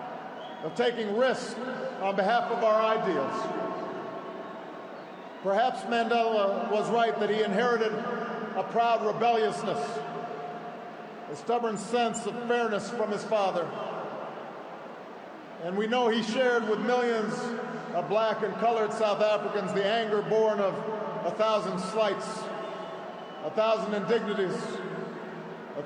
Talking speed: 115 wpm